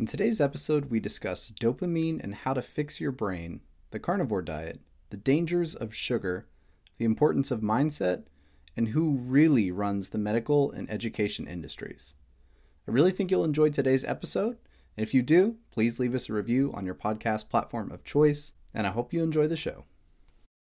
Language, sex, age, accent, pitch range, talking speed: English, male, 30-49, American, 95-130 Hz, 175 wpm